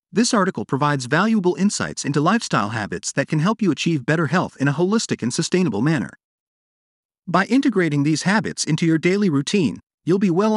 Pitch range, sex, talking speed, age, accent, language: 145-210 Hz, male, 180 wpm, 40-59, American, English